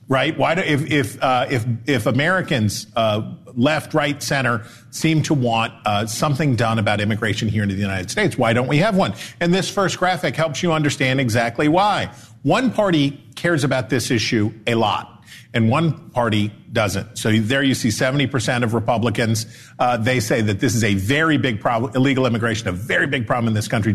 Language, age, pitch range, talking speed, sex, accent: English, 40-59, 110-155 Hz, 200 wpm, male, American